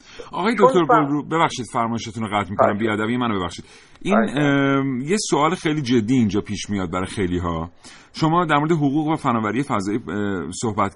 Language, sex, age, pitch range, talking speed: Persian, male, 40-59, 110-145 Hz, 165 wpm